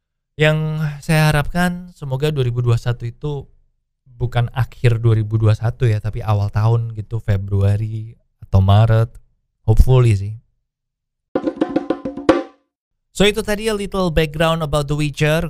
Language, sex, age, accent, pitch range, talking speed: Indonesian, male, 20-39, native, 110-130 Hz, 110 wpm